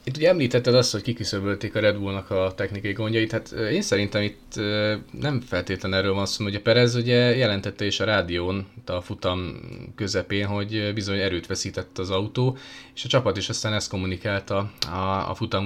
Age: 20-39